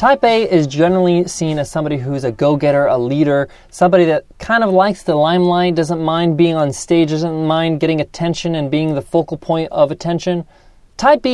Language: English